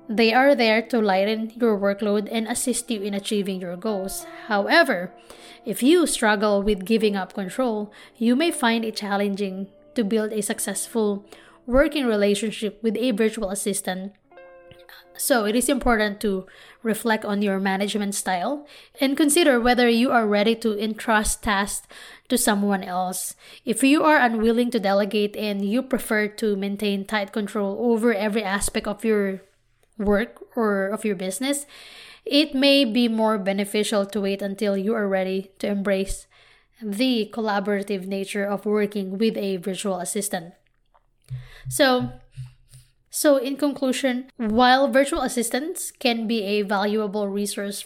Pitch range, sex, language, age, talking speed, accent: 200-240 Hz, female, English, 20-39, 145 wpm, Filipino